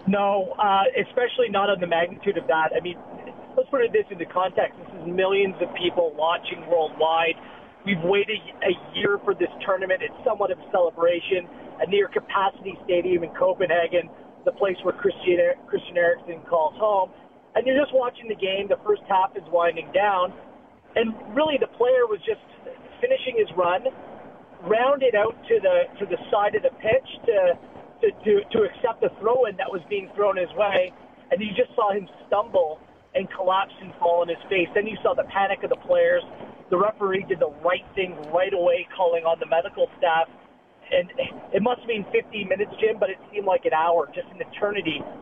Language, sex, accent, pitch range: English, male, American, 180-275 Hz